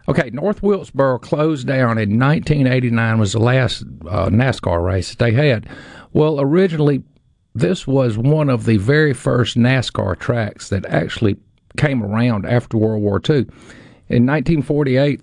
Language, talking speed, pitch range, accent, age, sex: English, 145 wpm, 110-140 Hz, American, 50-69, male